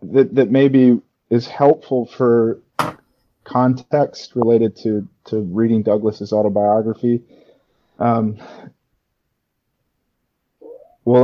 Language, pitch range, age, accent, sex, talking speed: English, 105-120 Hz, 30-49, American, male, 80 wpm